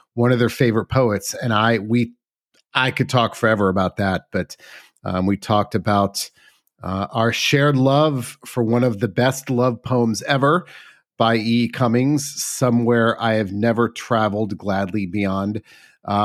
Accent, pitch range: American, 100-125 Hz